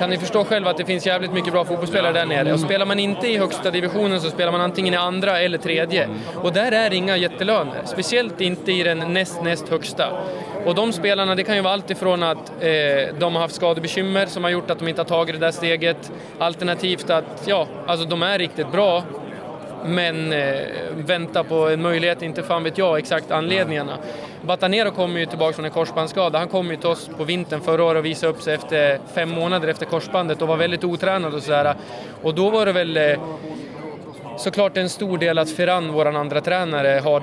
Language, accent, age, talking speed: Swedish, native, 20-39, 215 wpm